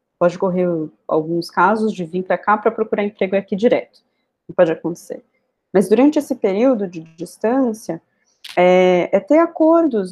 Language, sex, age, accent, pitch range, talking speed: Portuguese, female, 20-39, Brazilian, 180-245 Hz, 155 wpm